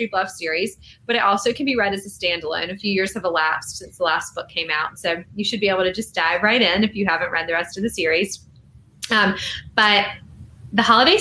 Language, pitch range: English, 185-250 Hz